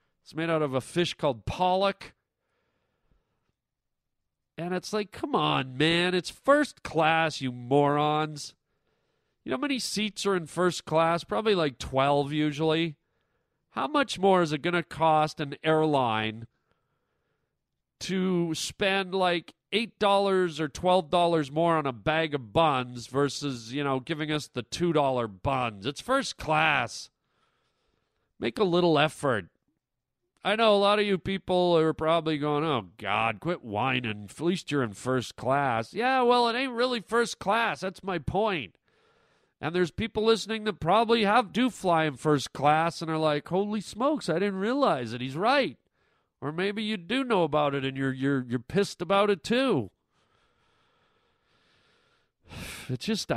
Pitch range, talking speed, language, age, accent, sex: 140-200 Hz, 155 wpm, English, 40-59, American, male